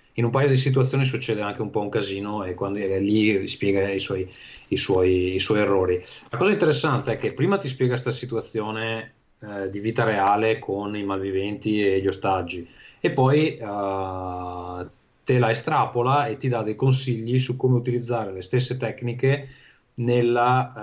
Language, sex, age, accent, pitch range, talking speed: Italian, male, 20-39, native, 100-120 Hz, 165 wpm